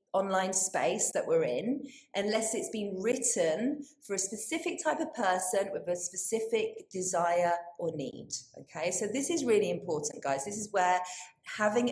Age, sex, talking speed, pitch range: 30-49, female, 160 wpm, 165-210 Hz